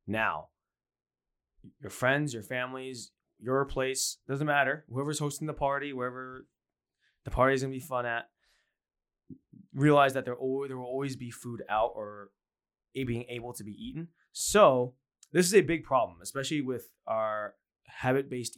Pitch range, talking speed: 105-135 Hz, 145 wpm